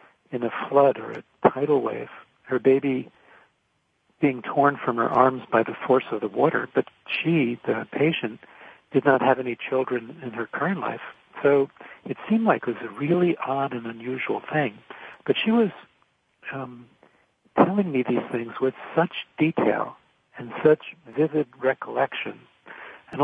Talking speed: 160 wpm